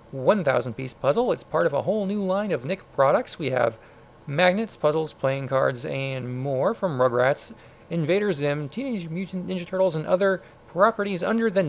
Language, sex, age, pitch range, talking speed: English, male, 40-59, 150-190 Hz, 170 wpm